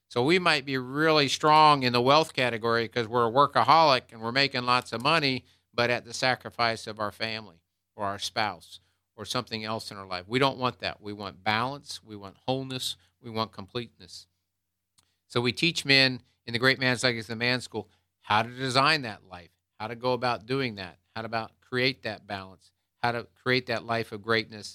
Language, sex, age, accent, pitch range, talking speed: English, male, 50-69, American, 100-130 Hz, 205 wpm